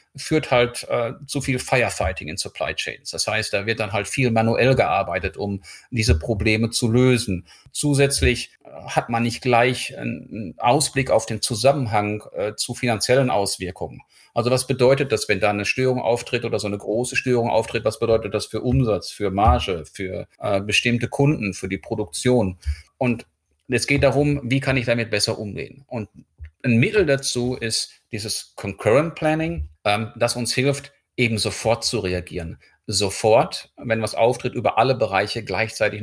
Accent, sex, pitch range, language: German, male, 100-125 Hz, German